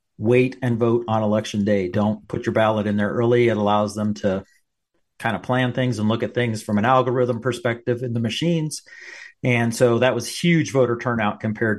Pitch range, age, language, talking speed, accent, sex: 105-125 Hz, 40-59, English, 205 wpm, American, male